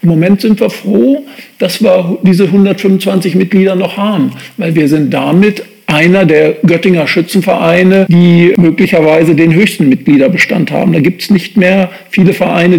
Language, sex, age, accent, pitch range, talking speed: German, male, 50-69, German, 165-190 Hz, 155 wpm